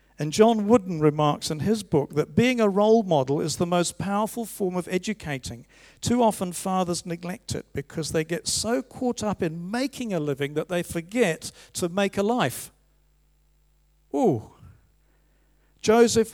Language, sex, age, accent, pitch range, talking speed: English, male, 50-69, British, 145-195 Hz, 160 wpm